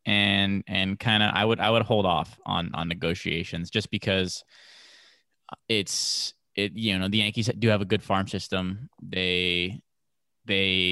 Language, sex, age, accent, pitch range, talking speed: English, male, 20-39, American, 90-100 Hz, 160 wpm